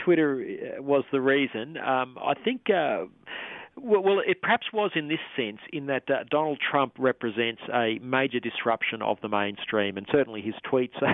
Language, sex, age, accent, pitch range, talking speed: English, male, 40-59, Australian, 110-130 Hz, 170 wpm